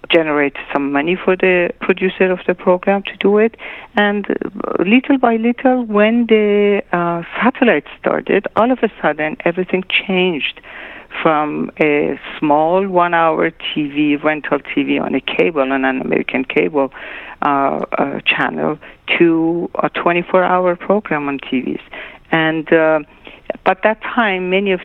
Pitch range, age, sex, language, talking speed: 150-195 Hz, 50-69, female, English, 140 wpm